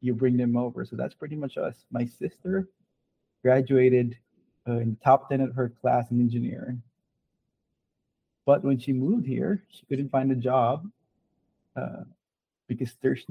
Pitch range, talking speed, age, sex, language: 120-135 Hz, 160 wpm, 20-39, male, English